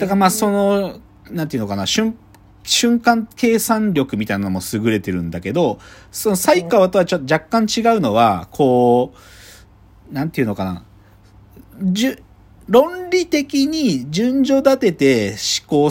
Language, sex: Japanese, male